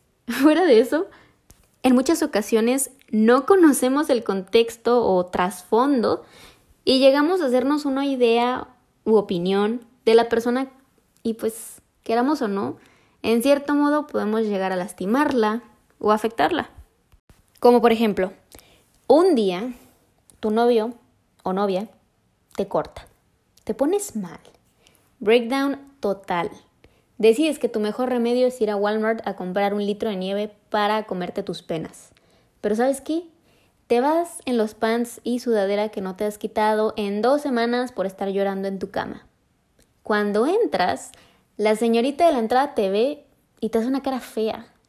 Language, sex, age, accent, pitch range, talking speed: Spanish, female, 20-39, Mexican, 210-265 Hz, 150 wpm